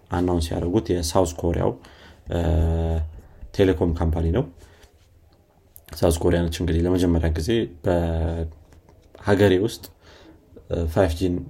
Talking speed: 80 wpm